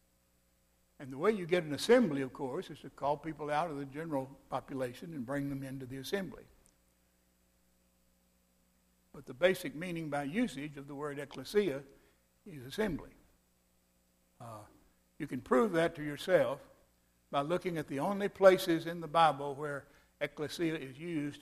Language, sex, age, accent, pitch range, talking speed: English, male, 60-79, American, 130-170 Hz, 155 wpm